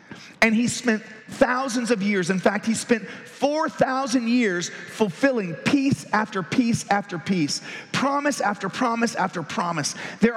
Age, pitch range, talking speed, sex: 40-59, 180-235 Hz, 140 wpm, male